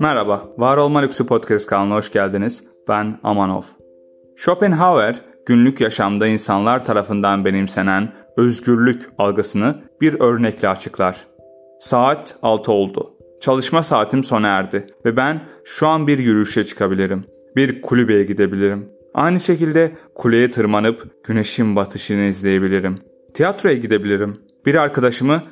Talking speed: 115 wpm